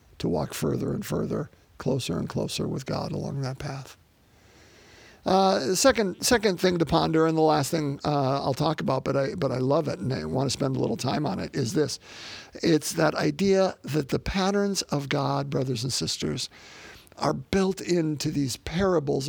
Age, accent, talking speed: 50-69, American, 185 wpm